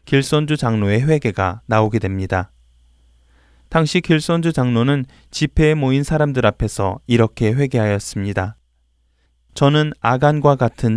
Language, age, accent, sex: Korean, 20-39, native, male